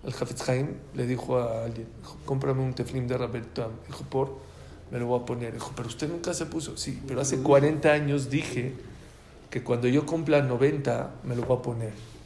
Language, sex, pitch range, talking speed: English, male, 125-150 Hz, 195 wpm